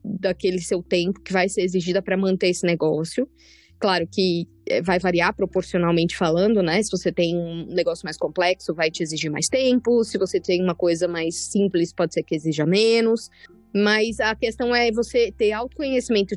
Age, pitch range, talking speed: 20-39, 175-230 Hz, 180 wpm